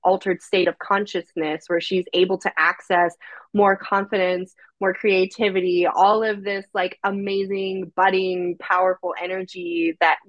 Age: 20-39